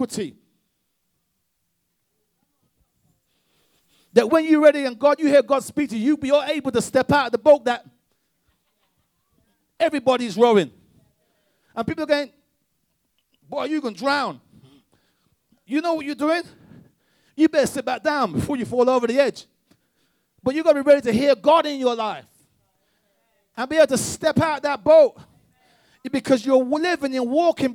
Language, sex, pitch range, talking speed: English, male, 200-290 Hz, 160 wpm